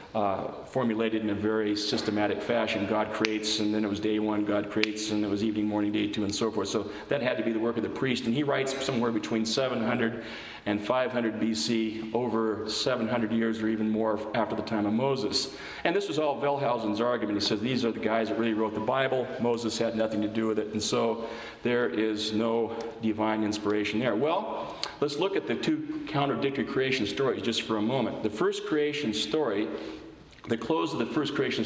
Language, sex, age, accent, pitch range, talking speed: English, male, 40-59, American, 110-130 Hz, 210 wpm